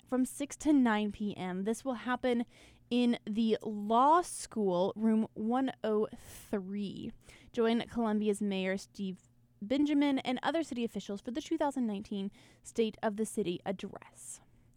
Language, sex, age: English, female, 10-29